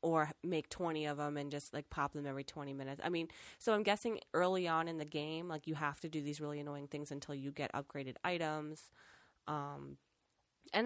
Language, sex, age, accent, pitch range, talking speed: English, female, 20-39, American, 145-165 Hz, 215 wpm